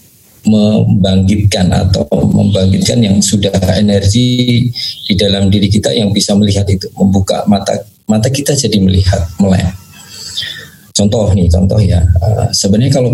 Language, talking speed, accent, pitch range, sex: Indonesian, 120 wpm, native, 95-115 Hz, male